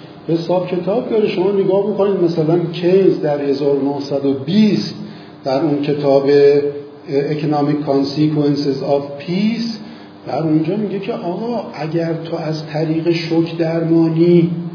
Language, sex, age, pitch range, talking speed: Persian, male, 50-69, 140-175 Hz, 120 wpm